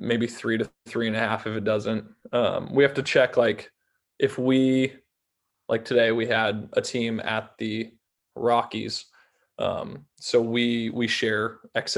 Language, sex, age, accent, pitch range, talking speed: English, male, 20-39, American, 110-125 Hz, 160 wpm